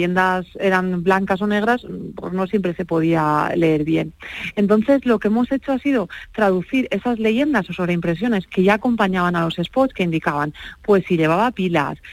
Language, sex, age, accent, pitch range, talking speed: Spanish, female, 40-59, Spanish, 175-220 Hz, 175 wpm